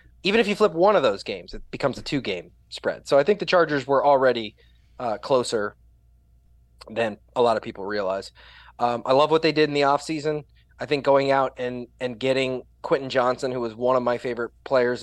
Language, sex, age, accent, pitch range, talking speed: English, male, 20-39, American, 120-155 Hz, 210 wpm